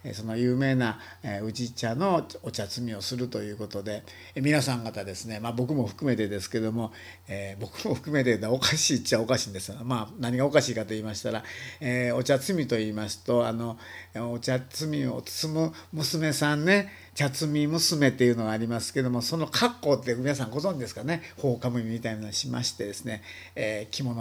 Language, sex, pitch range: Japanese, male, 110-140 Hz